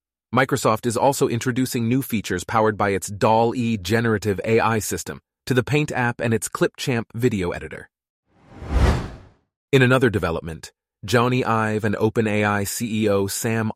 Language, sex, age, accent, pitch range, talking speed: English, male, 30-49, American, 95-120 Hz, 140 wpm